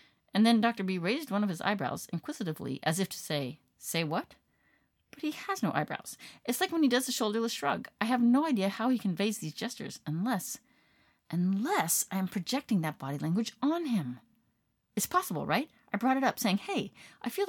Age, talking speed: 40-59, 200 wpm